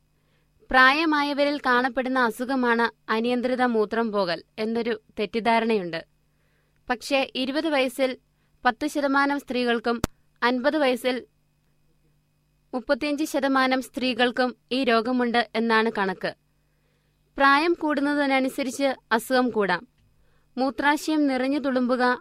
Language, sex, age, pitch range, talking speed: Malayalam, female, 20-39, 235-270 Hz, 80 wpm